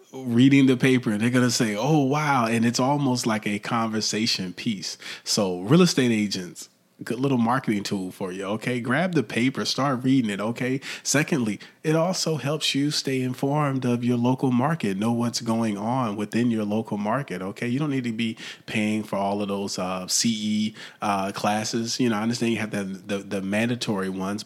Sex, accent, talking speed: male, American, 195 wpm